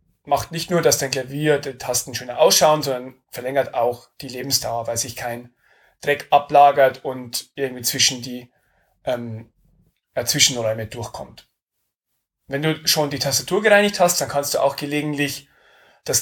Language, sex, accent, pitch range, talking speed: German, male, German, 125-150 Hz, 150 wpm